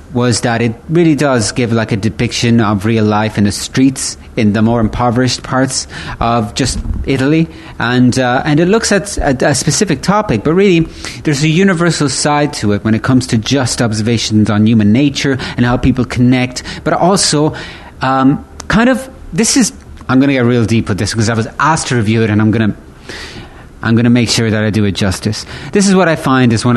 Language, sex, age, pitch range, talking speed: English, male, 30-49, 110-140 Hz, 215 wpm